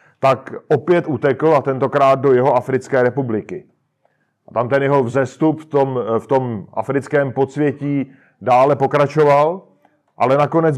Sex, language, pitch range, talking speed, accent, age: male, Czech, 130-155 Hz, 135 wpm, native, 40-59